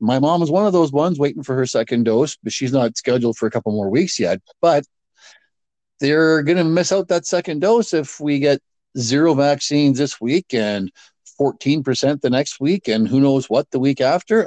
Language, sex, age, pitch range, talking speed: English, male, 50-69, 125-160 Hz, 205 wpm